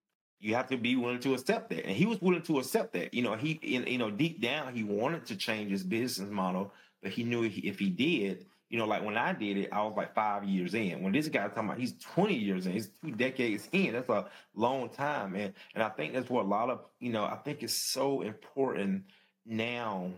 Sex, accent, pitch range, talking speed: male, American, 100-130 Hz, 245 wpm